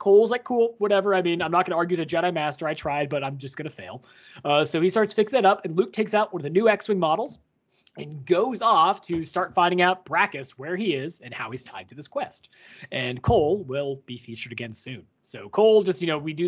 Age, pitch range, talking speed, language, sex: 30-49, 145-185 Hz, 260 wpm, English, male